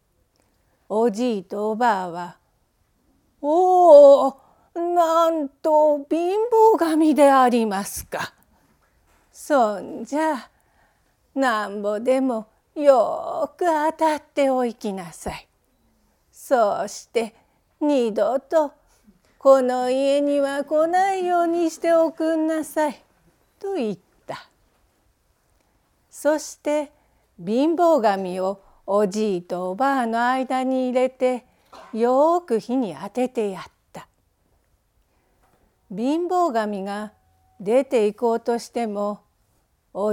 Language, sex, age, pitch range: Japanese, female, 40-59, 210-310 Hz